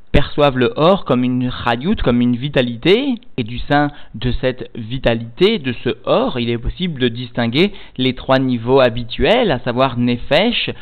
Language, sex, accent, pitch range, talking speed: French, male, French, 125-150 Hz, 165 wpm